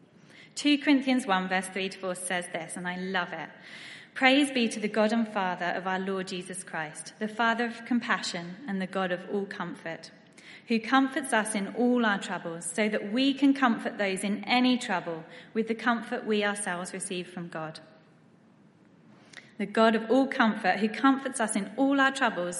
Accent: British